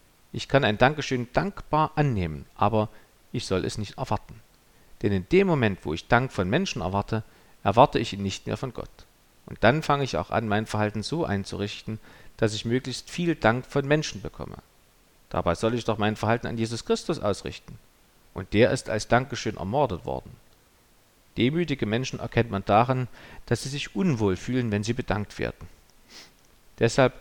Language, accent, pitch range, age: German, German, 100-130 Hz, 50-69